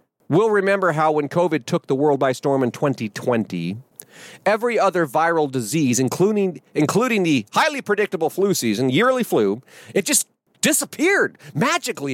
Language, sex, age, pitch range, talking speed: English, male, 40-59, 130-190 Hz, 145 wpm